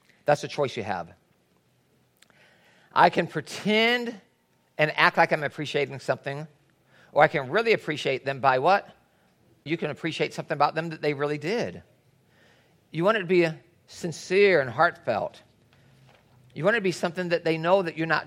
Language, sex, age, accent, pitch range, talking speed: English, male, 50-69, American, 150-205 Hz, 170 wpm